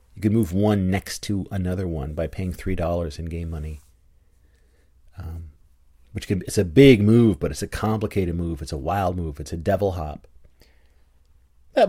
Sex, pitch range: male, 75-110 Hz